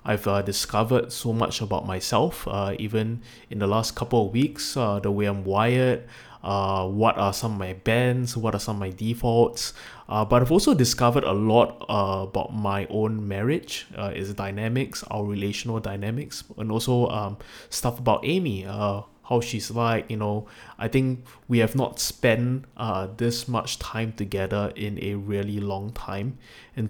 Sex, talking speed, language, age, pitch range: male, 180 wpm, English, 20-39, 100-120 Hz